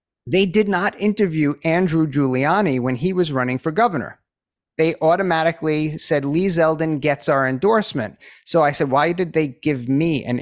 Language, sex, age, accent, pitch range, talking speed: English, male, 30-49, American, 145-195 Hz, 165 wpm